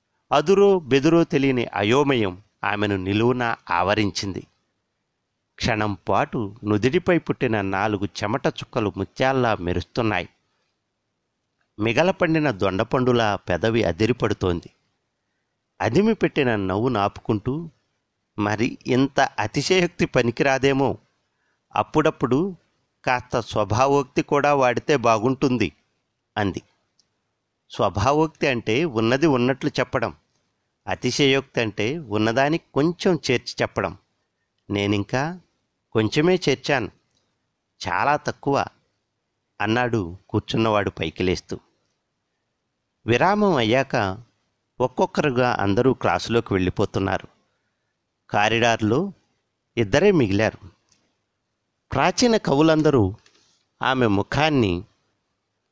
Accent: native